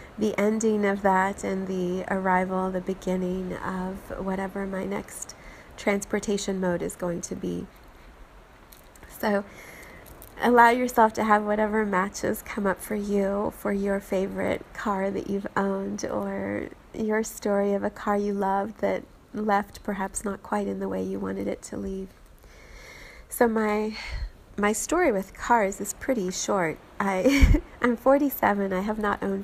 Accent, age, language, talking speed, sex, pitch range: American, 30-49, English, 150 wpm, female, 185-215 Hz